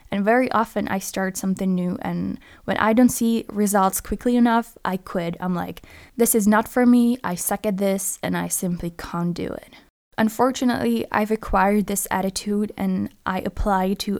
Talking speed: 180 wpm